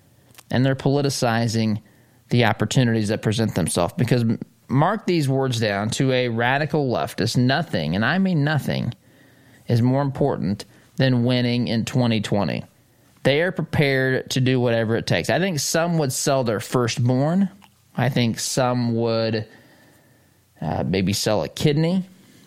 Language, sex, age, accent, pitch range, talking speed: English, male, 20-39, American, 115-140 Hz, 140 wpm